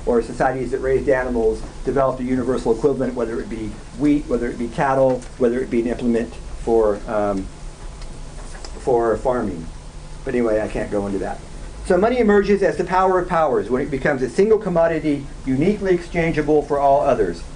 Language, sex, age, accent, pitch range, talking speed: English, male, 50-69, American, 130-175 Hz, 180 wpm